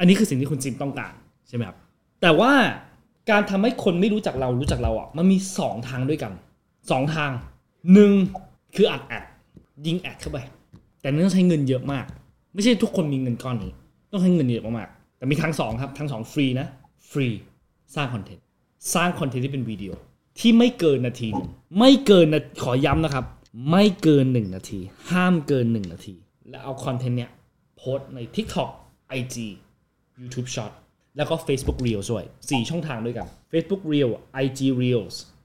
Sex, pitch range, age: male, 125-165 Hz, 20-39